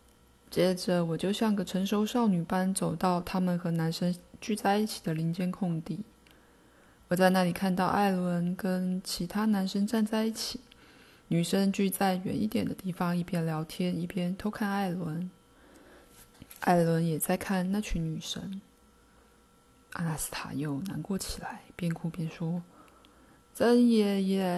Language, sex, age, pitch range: Chinese, female, 20-39, 180-225 Hz